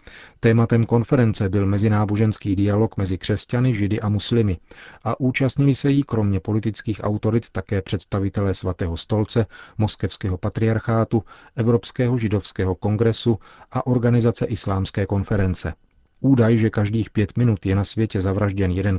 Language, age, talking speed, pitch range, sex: Czech, 40-59, 125 wpm, 100-115 Hz, male